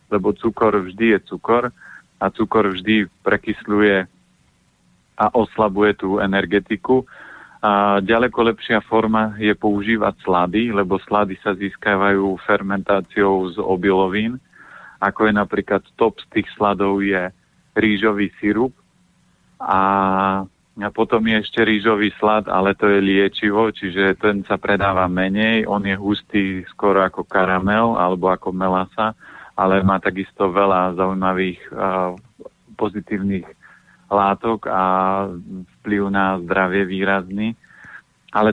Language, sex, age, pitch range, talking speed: Slovak, male, 40-59, 95-110 Hz, 115 wpm